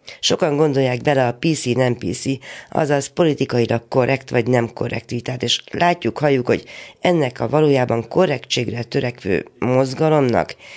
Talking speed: 135 wpm